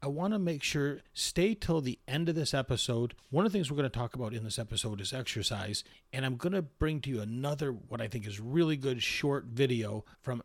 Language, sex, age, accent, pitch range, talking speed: English, male, 40-59, American, 120-145 Hz, 245 wpm